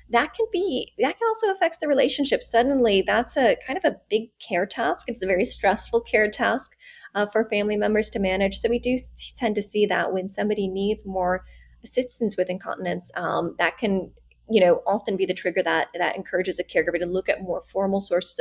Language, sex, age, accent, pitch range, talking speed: English, female, 20-39, American, 180-230 Hz, 210 wpm